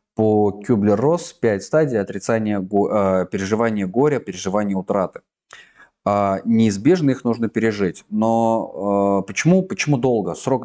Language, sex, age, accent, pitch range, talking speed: Russian, male, 20-39, native, 95-130 Hz, 100 wpm